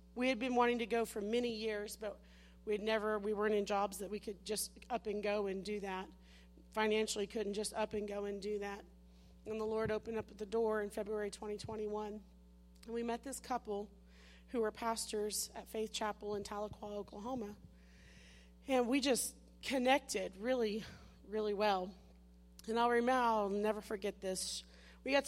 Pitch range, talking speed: 195-235 Hz, 180 wpm